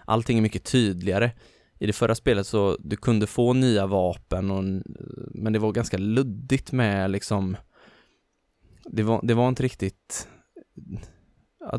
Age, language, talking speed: 20-39, English, 150 wpm